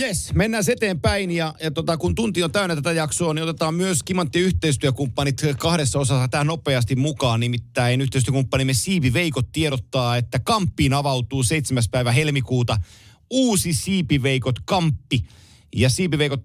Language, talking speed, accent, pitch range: Finnish, 130 wpm, native, 120-160 Hz